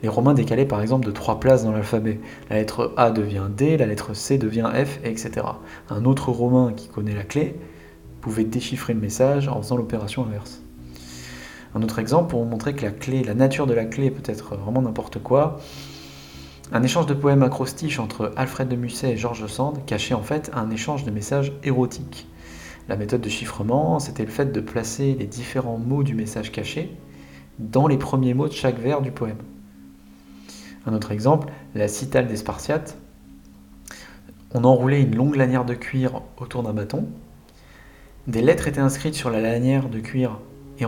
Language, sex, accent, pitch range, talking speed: French, male, French, 105-135 Hz, 185 wpm